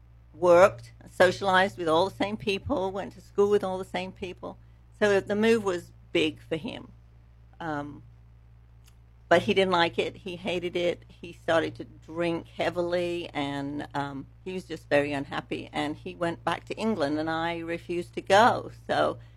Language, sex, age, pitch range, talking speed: English, female, 60-79, 120-180 Hz, 170 wpm